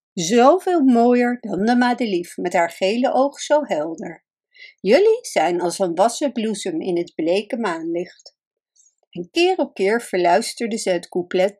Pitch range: 185-275 Hz